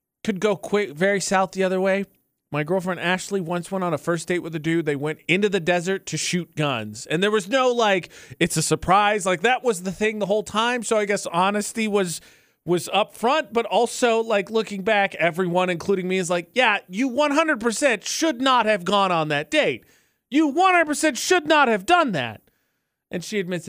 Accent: American